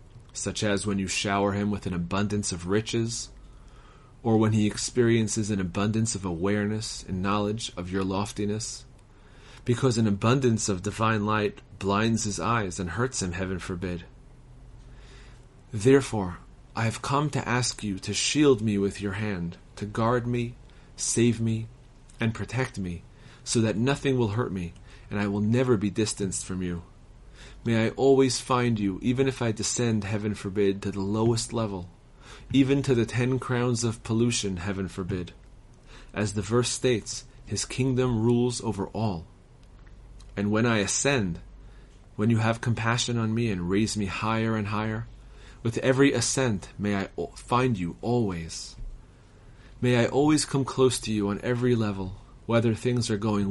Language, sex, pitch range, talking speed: English, male, 100-125 Hz, 160 wpm